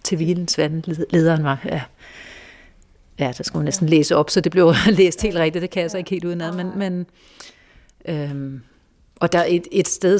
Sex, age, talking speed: female, 40-59, 195 wpm